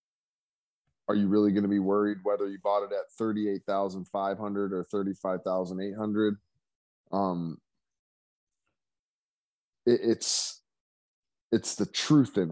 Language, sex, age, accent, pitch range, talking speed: English, male, 20-39, American, 95-115 Hz, 100 wpm